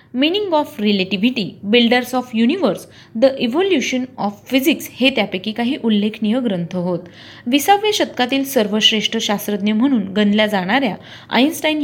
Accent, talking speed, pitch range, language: native, 120 wpm, 205-275 Hz, Marathi